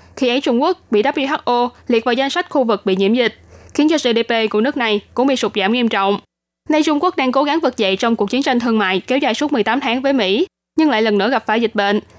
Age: 10-29